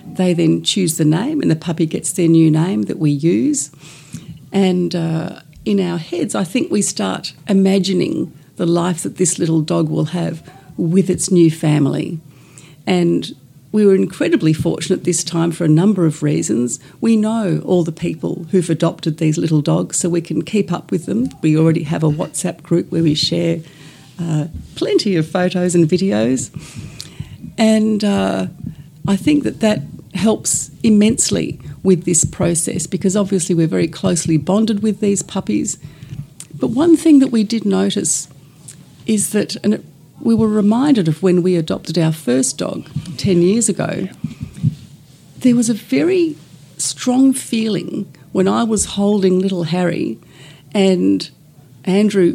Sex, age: female, 40-59